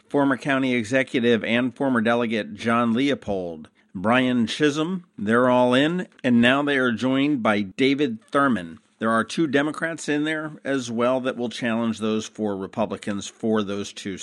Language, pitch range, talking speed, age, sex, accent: English, 110-145 Hz, 160 wpm, 50-69, male, American